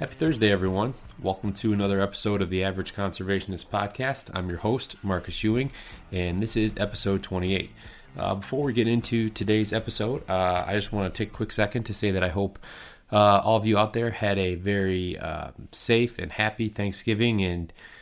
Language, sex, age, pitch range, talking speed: English, male, 30-49, 90-110 Hz, 195 wpm